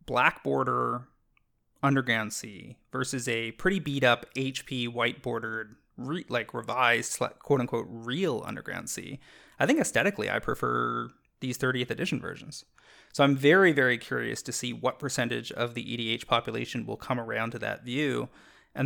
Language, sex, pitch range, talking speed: English, male, 120-140 Hz, 150 wpm